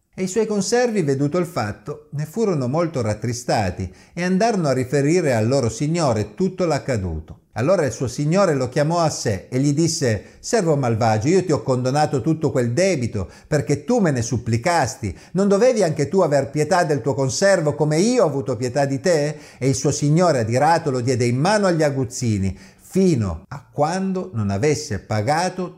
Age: 50-69